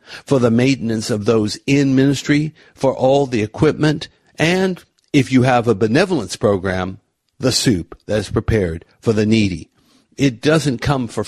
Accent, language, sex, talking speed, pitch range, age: American, English, male, 160 wpm, 105-140 Hz, 50-69